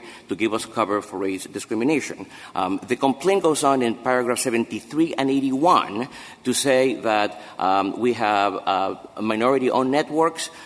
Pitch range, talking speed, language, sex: 115-140 Hz, 145 wpm, English, male